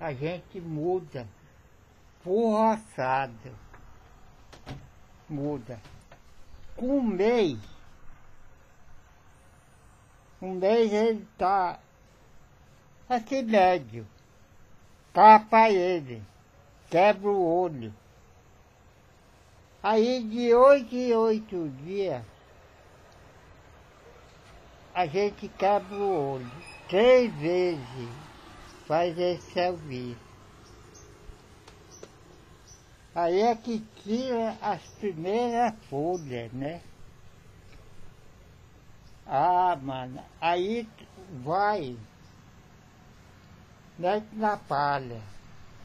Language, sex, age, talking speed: Portuguese, male, 60-79, 65 wpm